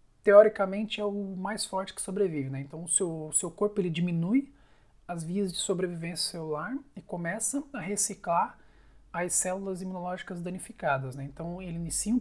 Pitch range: 160-195 Hz